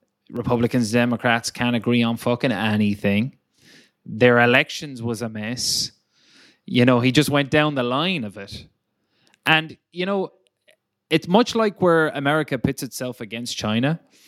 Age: 20-39